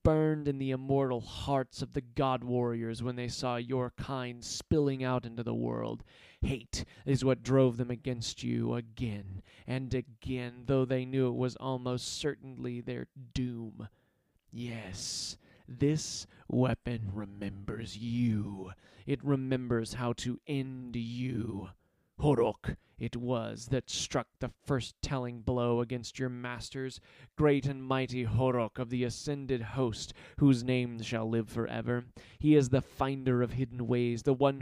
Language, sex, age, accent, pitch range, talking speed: English, male, 20-39, American, 115-135 Hz, 145 wpm